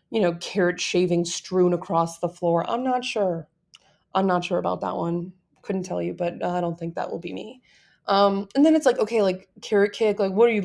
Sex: female